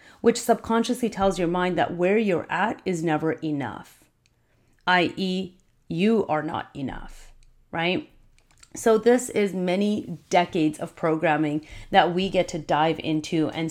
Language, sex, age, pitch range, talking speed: English, female, 30-49, 160-195 Hz, 140 wpm